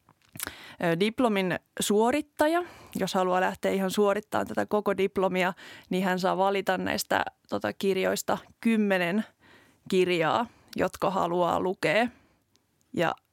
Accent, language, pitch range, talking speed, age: native, Finnish, 190-230 Hz, 110 wpm, 20-39